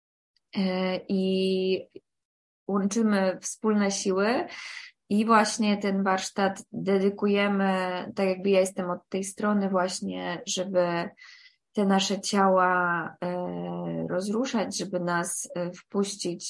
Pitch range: 185-210 Hz